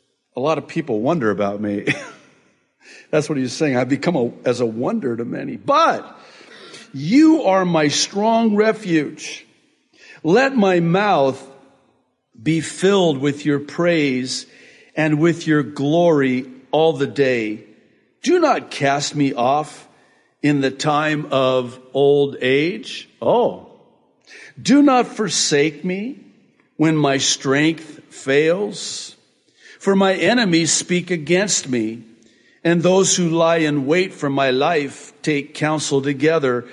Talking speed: 125 wpm